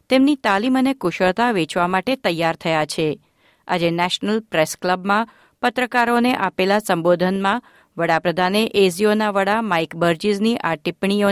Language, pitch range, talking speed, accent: Gujarati, 165-215 Hz, 115 wpm, native